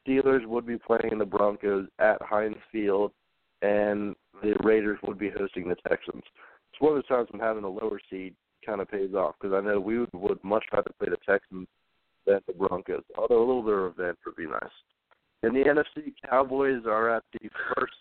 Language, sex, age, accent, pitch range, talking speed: English, male, 40-59, American, 100-130 Hz, 210 wpm